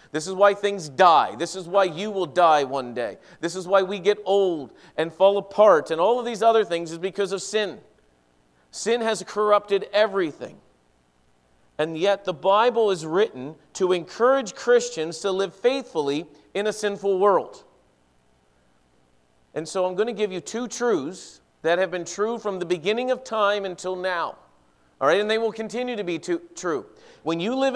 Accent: American